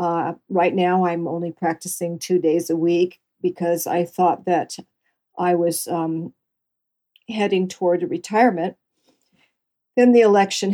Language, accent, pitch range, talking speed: English, American, 170-190 Hz, 130 wpm